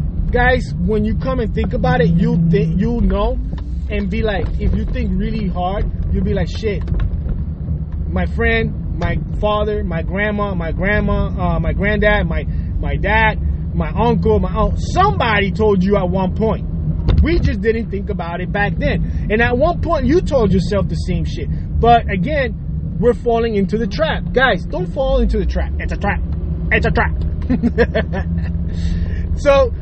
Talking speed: 170 wpm